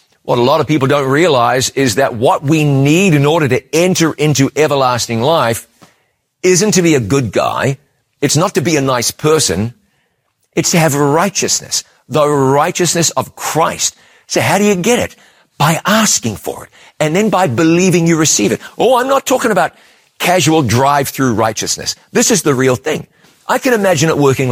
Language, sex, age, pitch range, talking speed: English, male, 50-69, 135-185 Hz, 185 wpm